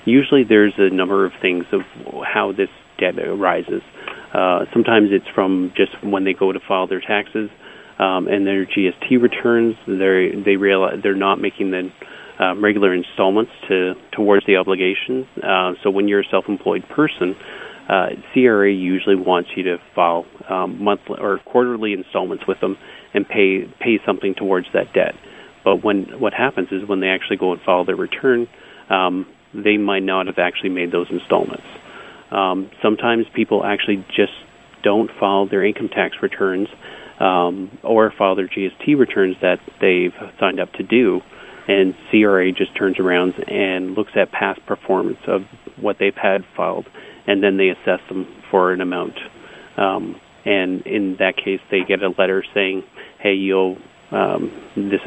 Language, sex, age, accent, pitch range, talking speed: English, male, 30-49, American, 95-105 Hz, 165 wpm